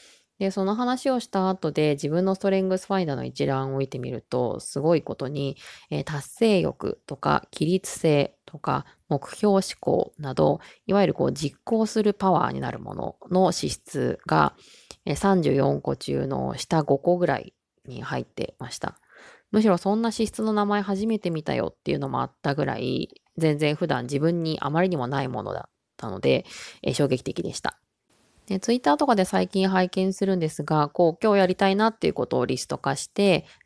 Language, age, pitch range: Japanese, 20-39, 150-195 Hz